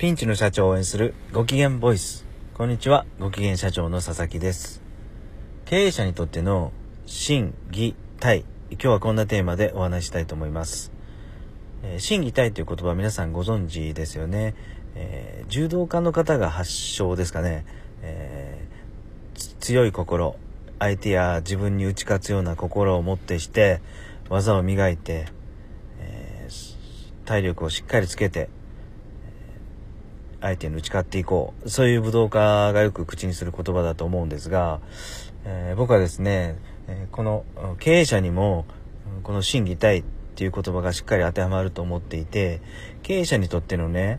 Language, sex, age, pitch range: Japanese, male, 40-59, 85-105 Hz